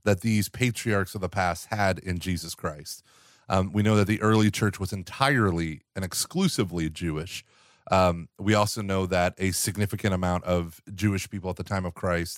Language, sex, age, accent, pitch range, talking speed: English, male, 30-49, American, 95-115 Hz, 185 wpm